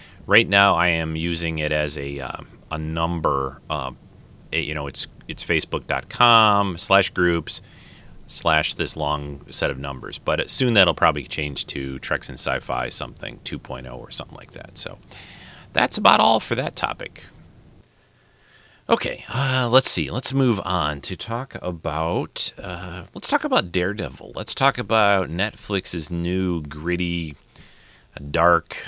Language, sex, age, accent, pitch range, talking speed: English, male, 30-49, American, 75-95 Hz, 140 wpm